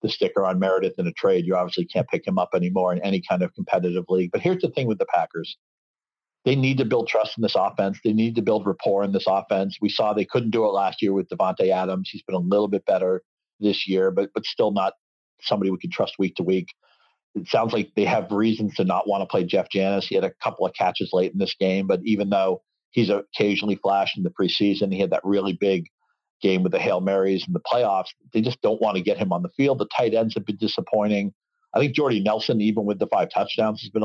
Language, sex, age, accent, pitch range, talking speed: English, male, 50-69, American, 95-110 Hz, 255 wpm